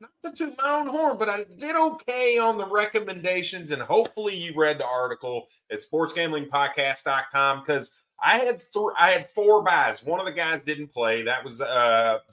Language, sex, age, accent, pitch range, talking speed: English, male, 30-49, American, 130-180 Hz, 180 wpm